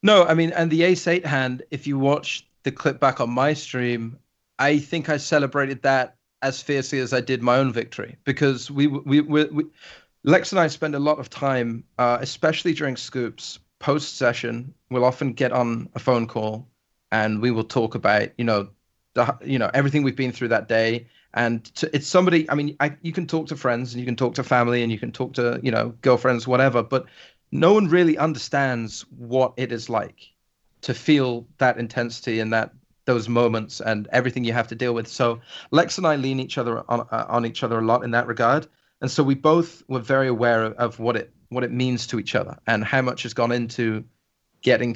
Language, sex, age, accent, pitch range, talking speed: English, male, 30-49, British, 115-140 Hz, 220 wpm